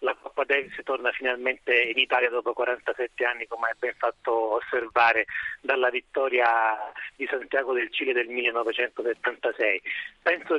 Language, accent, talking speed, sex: Italian, native, 135 wpm, male